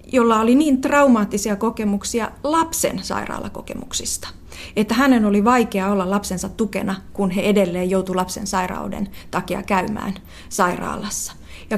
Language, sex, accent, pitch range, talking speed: Finnish, female, native, 185-230 Hz, 120 wpm